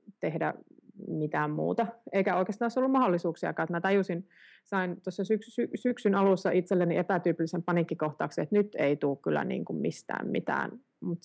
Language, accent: Finnish, native